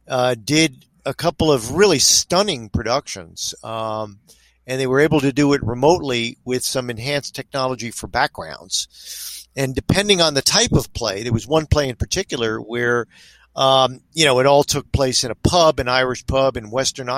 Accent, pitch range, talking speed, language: American, 120-150 Hz, 180 wpm, English